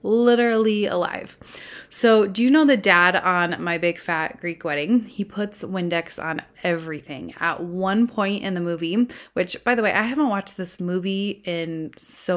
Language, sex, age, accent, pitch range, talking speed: English, female, 30-49, American, 175-235 Hz, 175 wpm